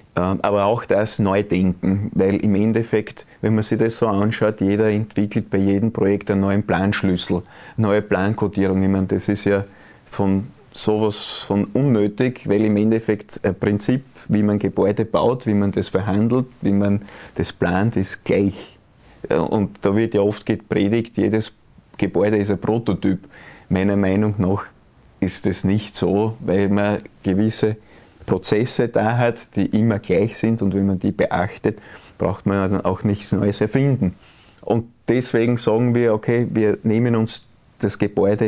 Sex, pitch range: male, 100-110 Hz